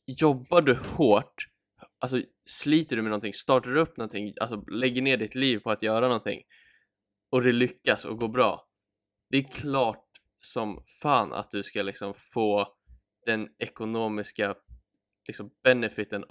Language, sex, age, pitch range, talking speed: Swedish, male, 10-29, 105-125 Hz, 150 wpm